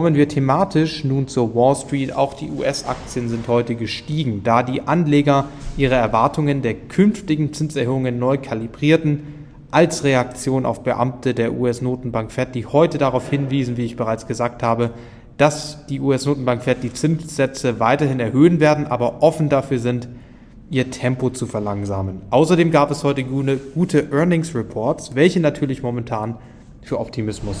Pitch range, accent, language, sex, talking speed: 115-140 Hz, German, English, male, 150 wpm